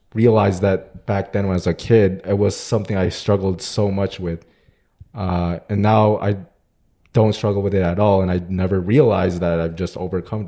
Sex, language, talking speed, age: male, English, 200 wpm, 20-39